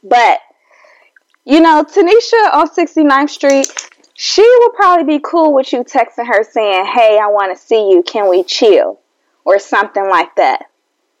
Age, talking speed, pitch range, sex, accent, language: 10-29, 160 wpm, 210-320 Hz, female, American, English